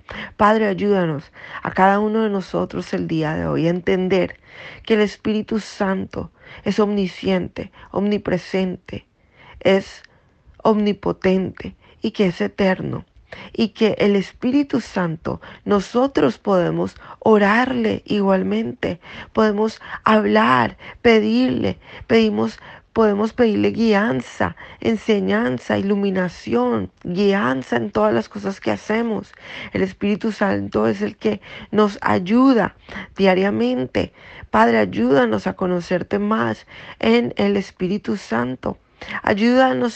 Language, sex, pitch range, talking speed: Spanish, female, 185-220 Hz, 105 wpm